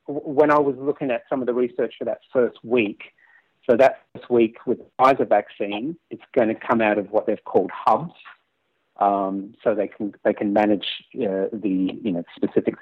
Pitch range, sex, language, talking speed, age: 110-145 Hz, male, English, 200 wpm, 40-59